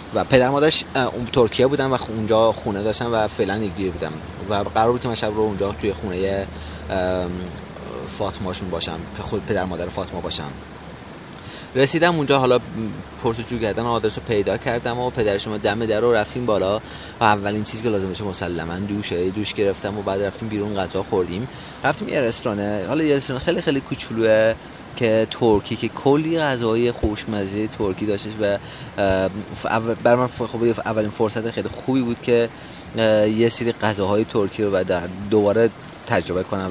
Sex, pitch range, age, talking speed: male, 95-120 Hz, 30-49, 155 wpm